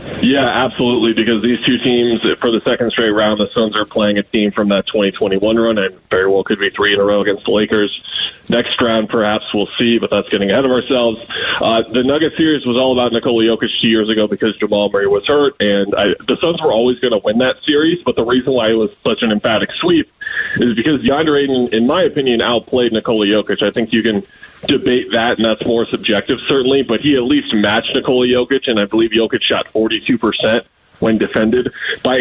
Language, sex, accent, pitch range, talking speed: English, male, American, 105-125 Hz, 220 wpm